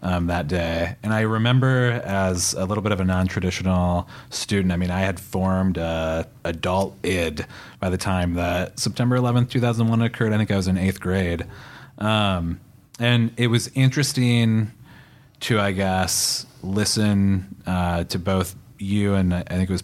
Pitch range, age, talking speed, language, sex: 90-115 Hz, 30-49, 165 wpm, English, male